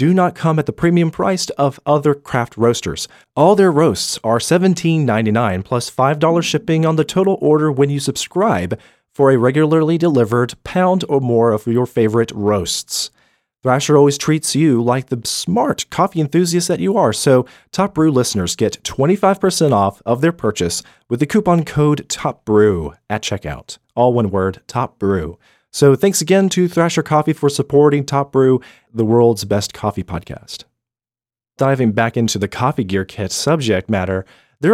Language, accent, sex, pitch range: English, American, male, 105-155 Hz